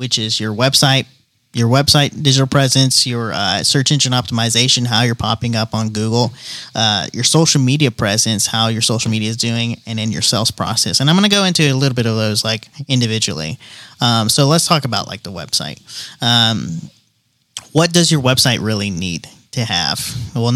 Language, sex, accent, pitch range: English, male, American, 115-140 Hz